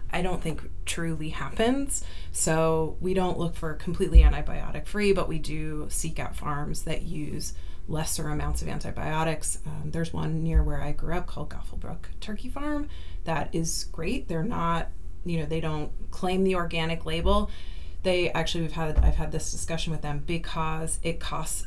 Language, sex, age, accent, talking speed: English, female, 30-49, American, 175 wpm